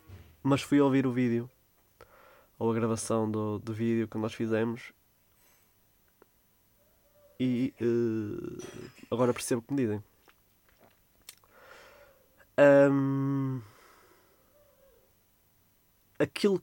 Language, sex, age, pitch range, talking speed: Portuguese, male, 20-39, 95-120 Hz, 80 wpm